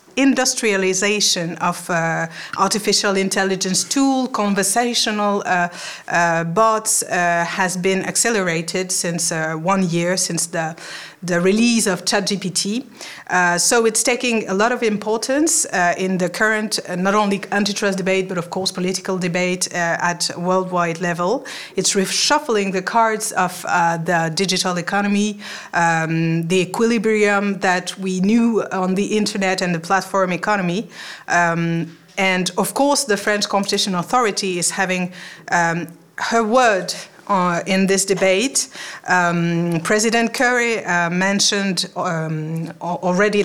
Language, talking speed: English, 135 wpm